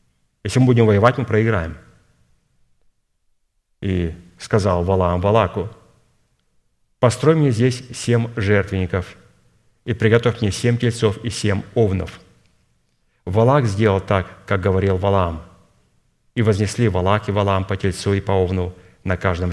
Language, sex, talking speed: Russian, male, 125 wpm